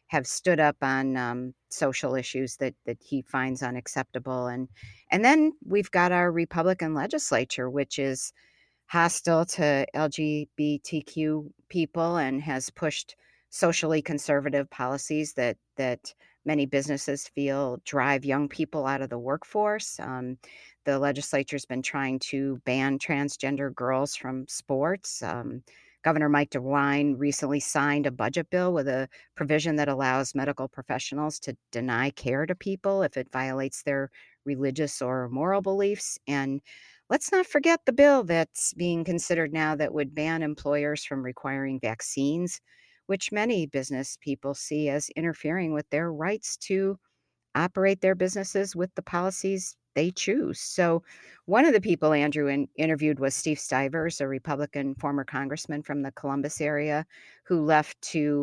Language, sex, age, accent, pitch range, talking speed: English, female, 50-69, American, 135-165 Hz, 145 wpm